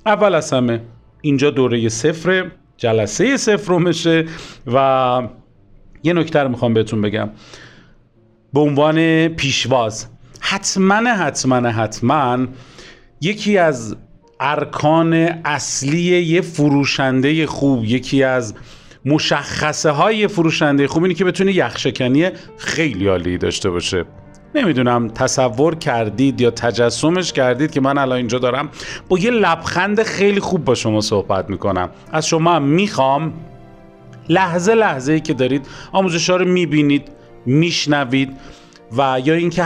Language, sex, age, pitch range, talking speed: Persian, male, 40-59, 120-165 Hz, 120 wpm